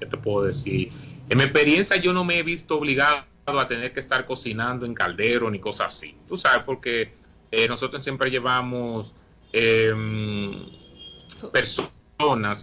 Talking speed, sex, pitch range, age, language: 145 wpm, male, 105-125 Hz, 30-49, Spanish